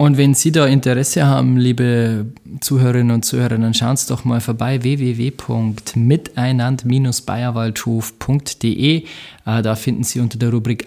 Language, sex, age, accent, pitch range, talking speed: German, male, 20-39, German, 115-140 Hz, 135 wpm